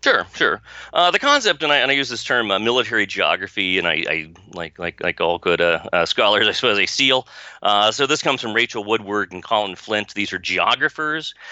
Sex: male